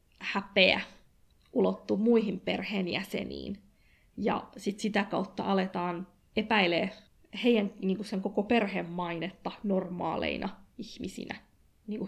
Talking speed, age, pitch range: 90 wpm, 20-39, 190-215 Hz